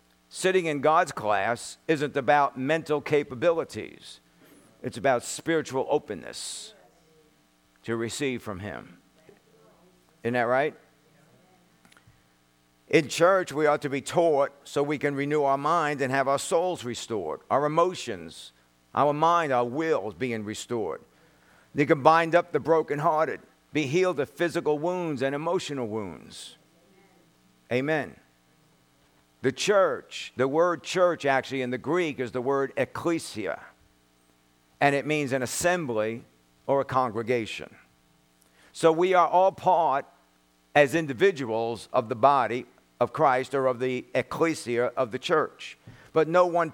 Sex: male